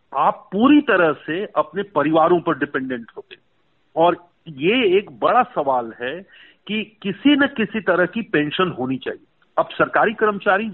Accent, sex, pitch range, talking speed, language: native, male, 165-220 Hz, 150 wpm, Hindi